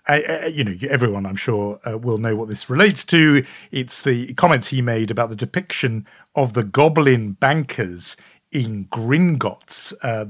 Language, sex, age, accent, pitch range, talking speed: English, male, 50-69, British, 110-145 Hz, 155 wpm